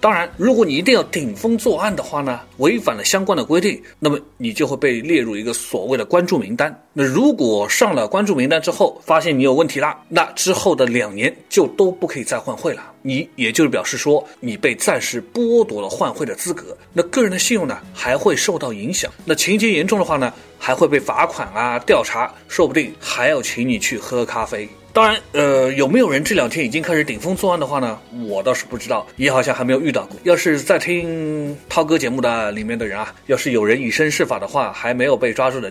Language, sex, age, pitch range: Chinese, male, 30-49, 135-225 Hz